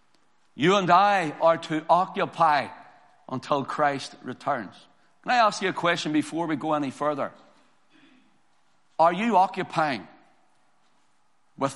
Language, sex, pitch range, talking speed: English, male, 155-200 Hz, 120 wpm